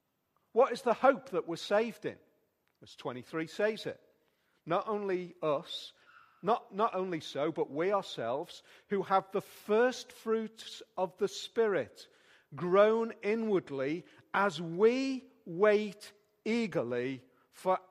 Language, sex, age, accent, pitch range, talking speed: English, male, 40-59, British, 165-225 Hz, 125 wpm